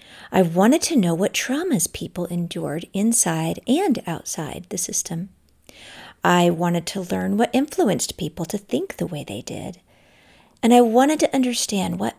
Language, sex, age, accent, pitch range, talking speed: English, female, 50-69, American, 175-240 Hz, 160 wpm